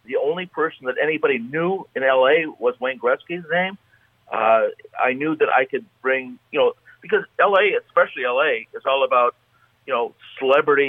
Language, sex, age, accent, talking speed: English, male, 50-69, American, 170 wpm